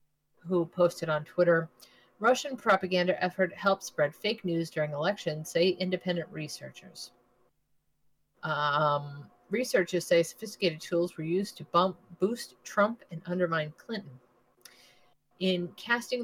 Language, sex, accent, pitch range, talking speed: English, female, American, 155-185 Hz, 120 wpm